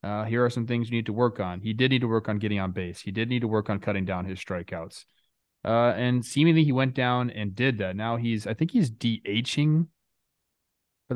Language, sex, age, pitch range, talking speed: English, male, 20-39, 105-145 Hz, 240 wpm